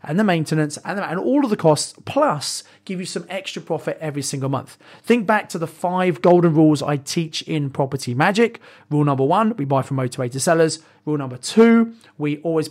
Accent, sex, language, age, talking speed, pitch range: British, male, English, 30-49, 205 wpm, 145-180 Hz